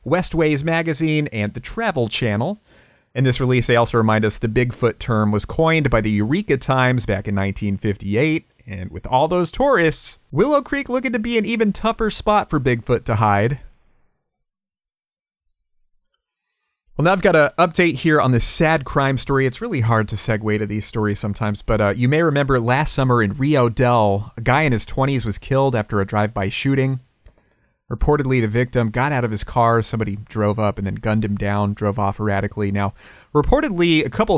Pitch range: 105-145 Hz